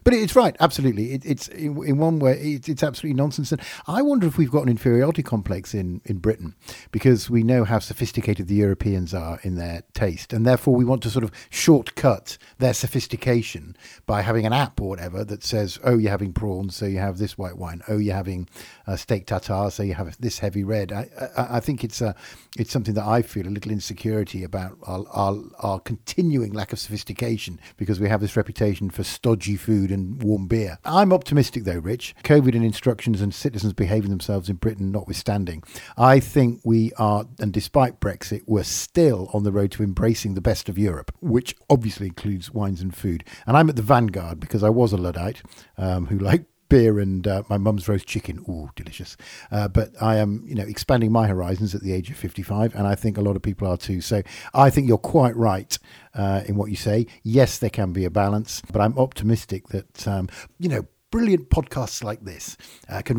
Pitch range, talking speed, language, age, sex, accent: 95-120 Hz, 210 wpm, English, 50-69, male, British